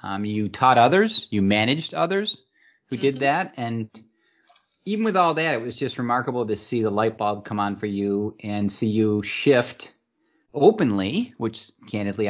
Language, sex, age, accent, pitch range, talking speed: English, male, 40-59, American, 105-150 Hz, 170 wpm